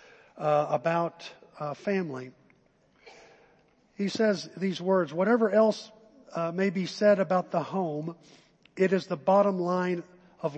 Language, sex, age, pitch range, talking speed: English, male, 50-69, 155-195 Hz, 130 wpm